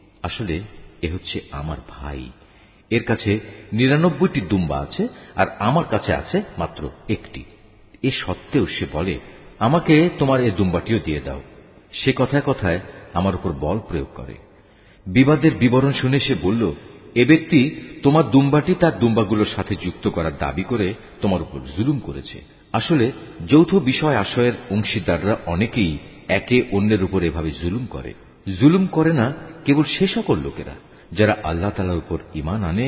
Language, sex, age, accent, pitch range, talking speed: Bengali, male, 50-69, native, 85-125 Hz, 140 wpm